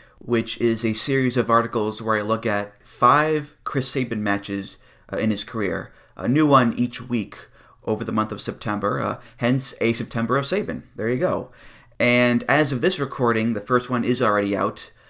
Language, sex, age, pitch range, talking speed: English, male, 30-49, 105-135 Hz, 190 wpm